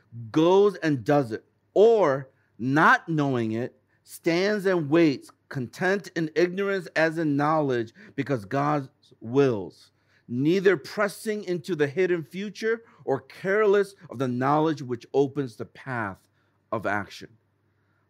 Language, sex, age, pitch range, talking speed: English, male, 50-69, 120-190 Hz, 125 wpm